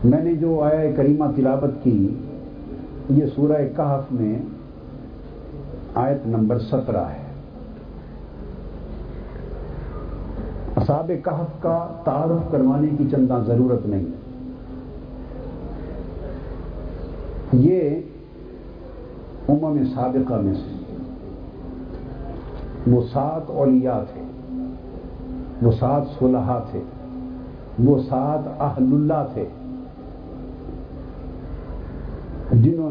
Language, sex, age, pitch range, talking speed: Urdu, male, 60-79, 105-140 Hz, 75 wpm